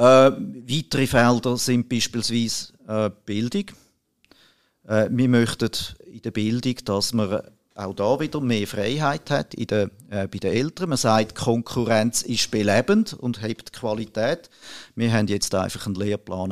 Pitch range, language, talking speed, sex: 105-130 Hz, German, 150 wpm, male